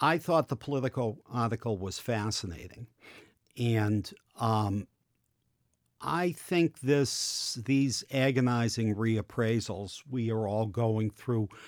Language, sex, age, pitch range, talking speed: English, male, 50-69, 105-135 Hz, 105 wpm